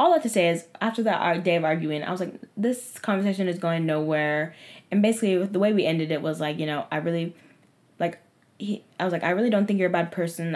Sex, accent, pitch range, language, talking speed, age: female, American, 155-195 Hz, English, 255 wpm, 10-29